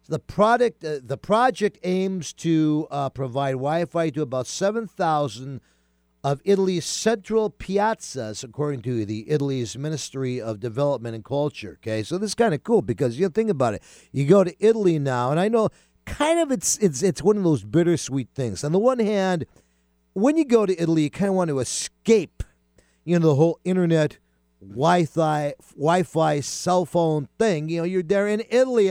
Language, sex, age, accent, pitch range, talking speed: English, male, 50-69, American, 125-185 Hz, 185 wpm